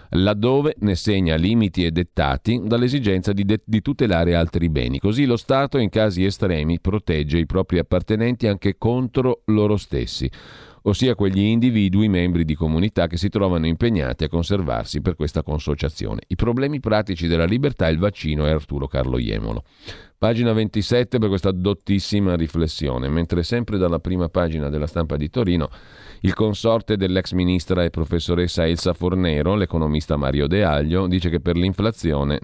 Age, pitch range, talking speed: 40-59, 80-105 Hz, 155 wpm